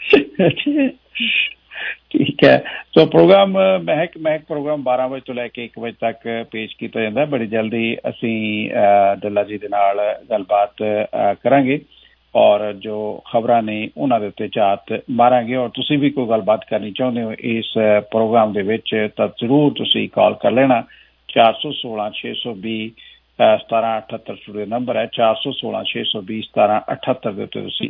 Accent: Indian